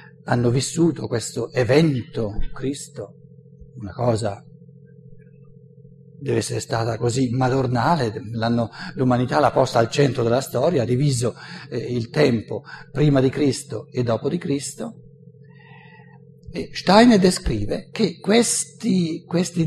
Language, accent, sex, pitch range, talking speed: Italian, native, male, 130-170 Hz, 115 wpm